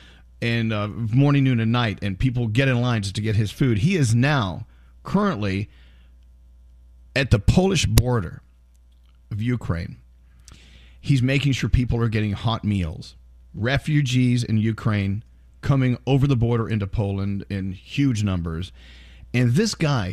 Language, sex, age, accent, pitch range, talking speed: English, male, 50-69, American, 95-140 Hz, 145 wpm